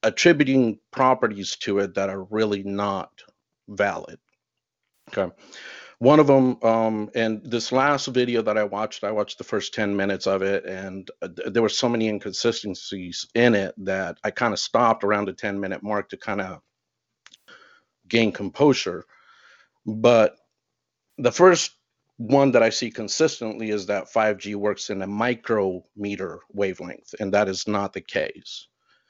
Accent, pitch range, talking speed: American, 100-115 Hz, 155 wpm